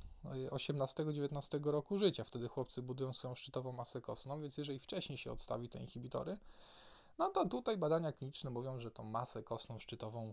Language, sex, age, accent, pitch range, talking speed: Polish, male, 20-39, native, 115-155 Hz, 165 wpm